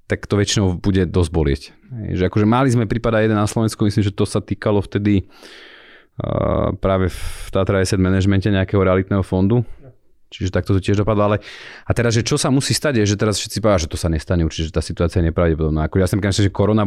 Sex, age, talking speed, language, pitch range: male, 30-49, 225 wpm, Slovak, 85-105 Hz